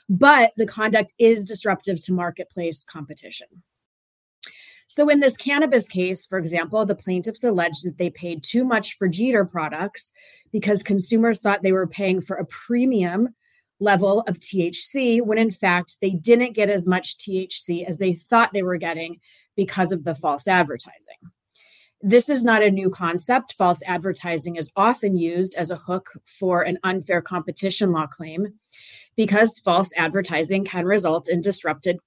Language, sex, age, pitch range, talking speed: English, female, 30-49, 175-220 Hz, 160 wpm